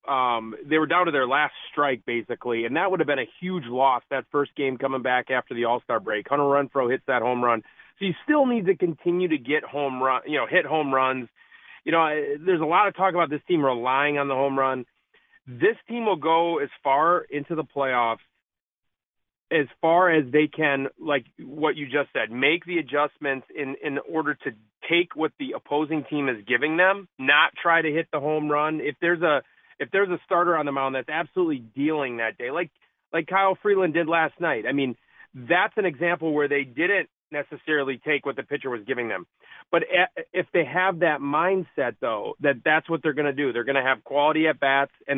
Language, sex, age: English, male, 30-49